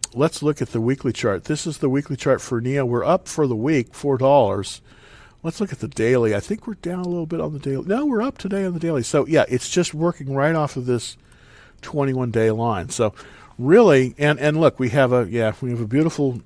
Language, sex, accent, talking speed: English, male, American, 235 wpm